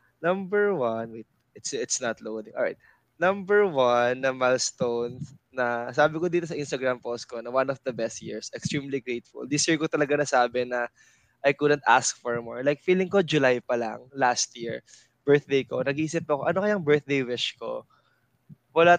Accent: native